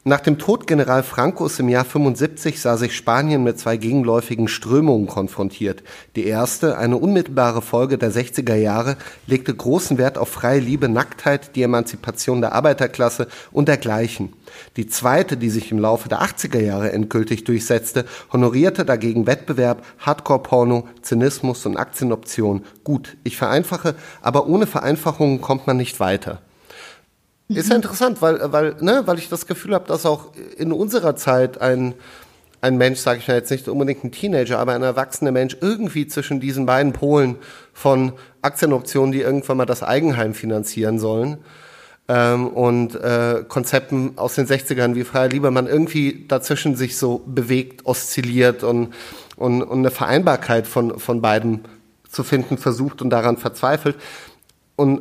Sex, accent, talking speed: male, German, 155 wpm